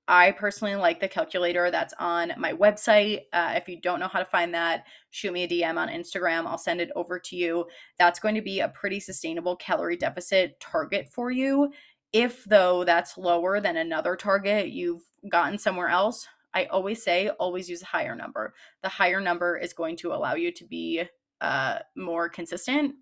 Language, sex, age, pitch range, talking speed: English, female, 20-39, 175-280 Hz, 195 wpm